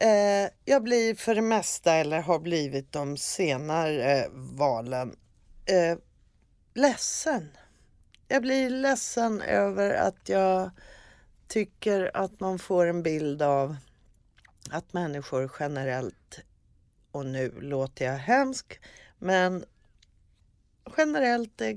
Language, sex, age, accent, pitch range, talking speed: Swedish, female, 30-49, native, 155-210 Hz, 100 wpm